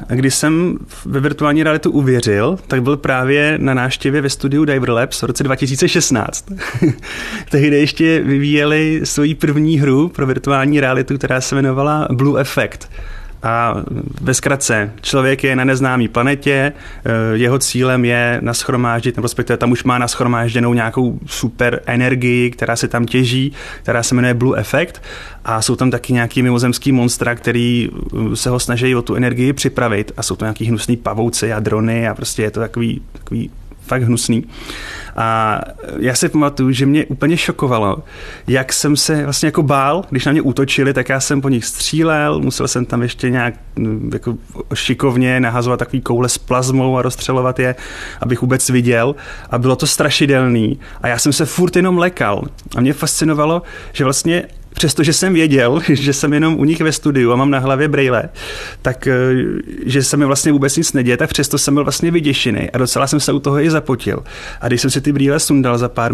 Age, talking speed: 30-49, 180 wpm